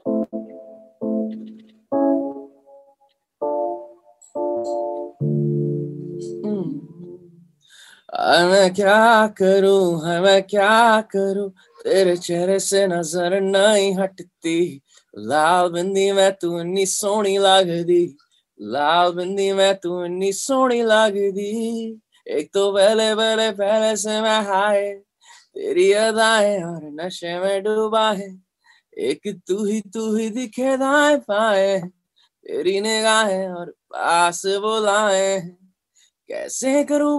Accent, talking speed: native, 85 wpm